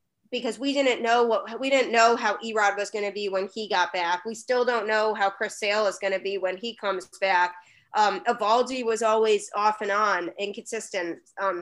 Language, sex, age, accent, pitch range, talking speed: English, female, 20-39, American, 195-230 Hz, 215 wpm